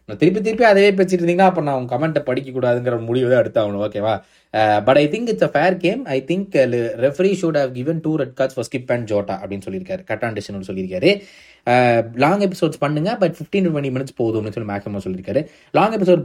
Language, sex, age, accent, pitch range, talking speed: Tamil, male, 20-39, native, 120-175 Hz, 75 wpm